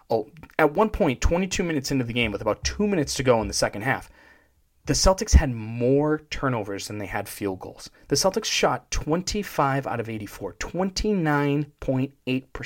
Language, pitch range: English, 105-140 Hz